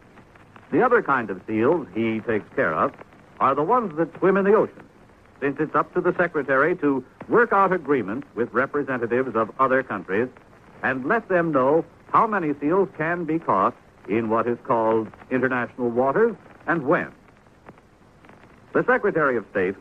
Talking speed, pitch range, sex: 165 wpm, 110-155 Hz, male